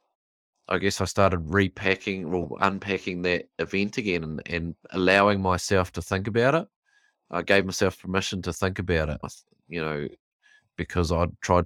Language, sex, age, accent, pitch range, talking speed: English, male, 30-49, Australian, 85-100 Hz, 170 wpm